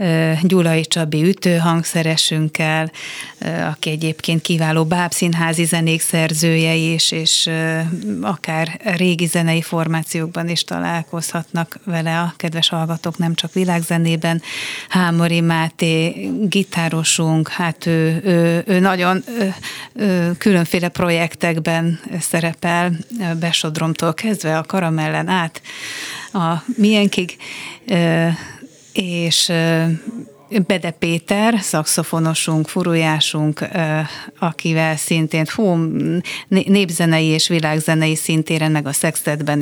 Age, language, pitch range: 30-49, Hungarian, 160-175 Hz